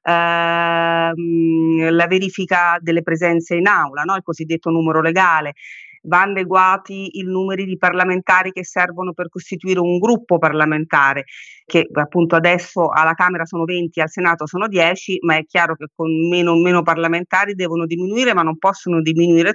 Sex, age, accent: female, 30-49, native